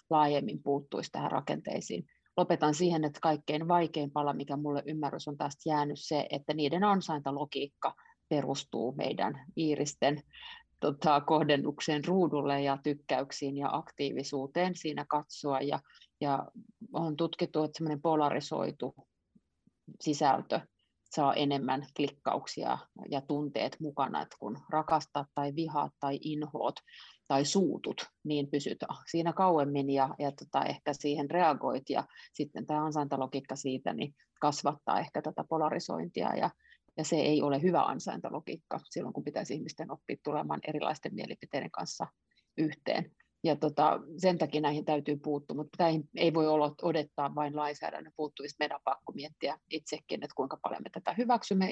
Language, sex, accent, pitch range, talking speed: Finnish, female, native, 145-160 Hz, 135 wpm